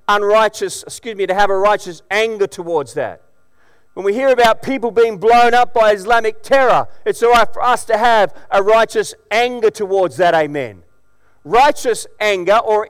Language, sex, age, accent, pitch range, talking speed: English, male, 40-59, Australian, 200-250 Hz, 170 wpm